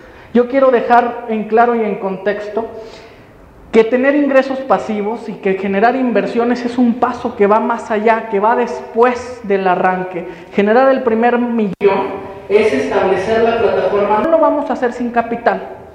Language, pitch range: Spanish, 200-240 Hz